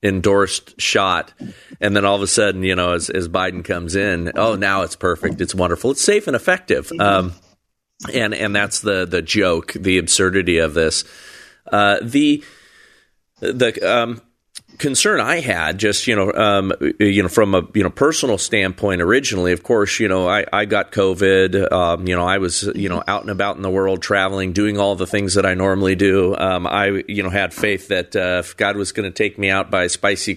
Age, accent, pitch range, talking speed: 40-59, American, 90-100 Hz, 205 wpm